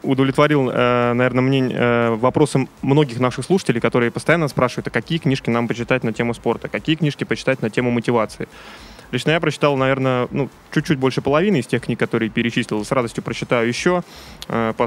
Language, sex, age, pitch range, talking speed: Russian, male, 20-39, 120-140 Hz, 165 wpm